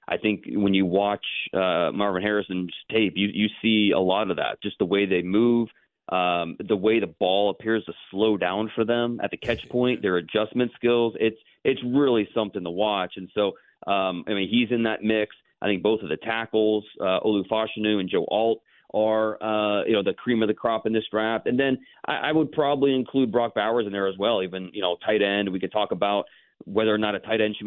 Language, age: English, 30-49